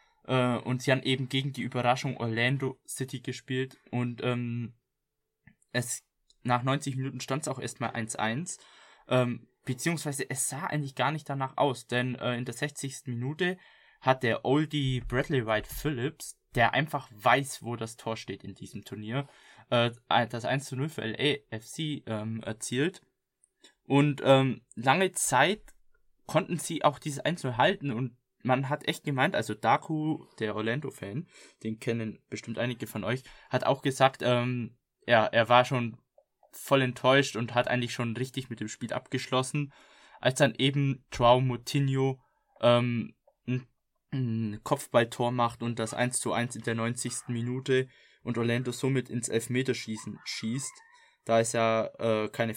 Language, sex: German, male